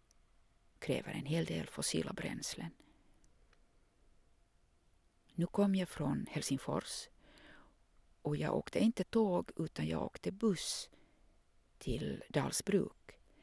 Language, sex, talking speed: English, female, 100 wpm